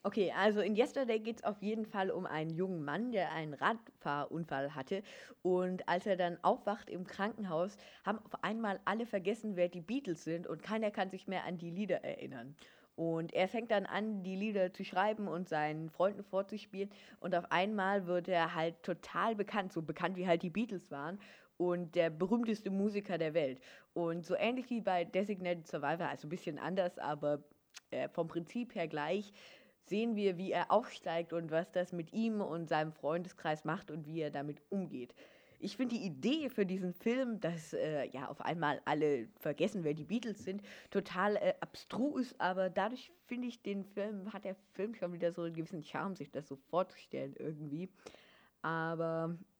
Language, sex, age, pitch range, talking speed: German, female, 20-39, 165-205 Hz, 185 wpm